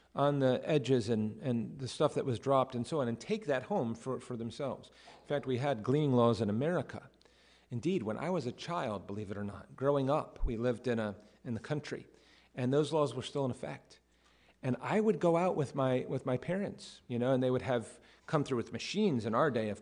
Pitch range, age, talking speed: 120-150 Hz, 40-59, 235 wpm